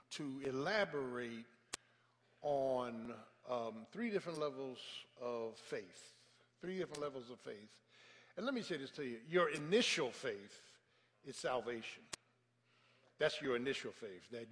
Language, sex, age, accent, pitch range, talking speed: English, male, 60-79, American, 125-160 Hz, 130 wpm